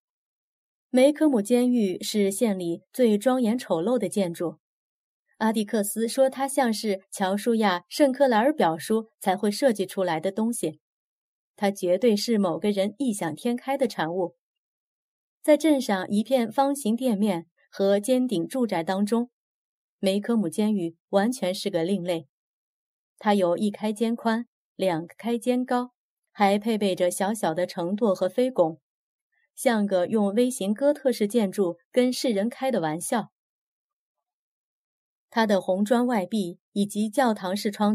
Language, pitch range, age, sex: Chinese, 185-245 Hz, 30-49, female